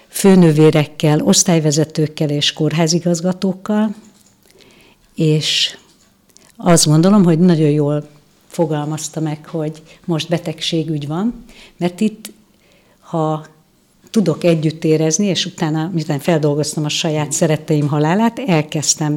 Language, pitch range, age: Hungarian, 155-185 Hz, 60-79